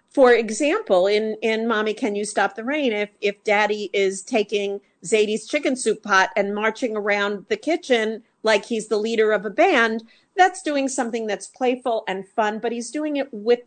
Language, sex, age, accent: English, female, 50-69, American